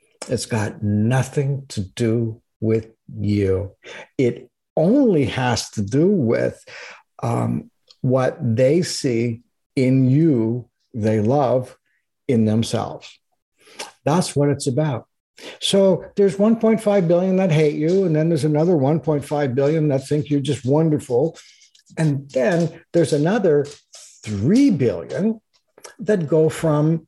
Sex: male